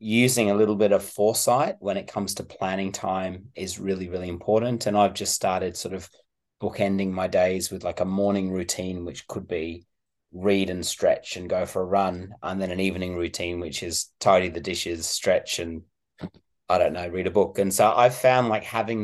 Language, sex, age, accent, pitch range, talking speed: English, male, 30-49, Australian, 90-105 Hz, 205 wpm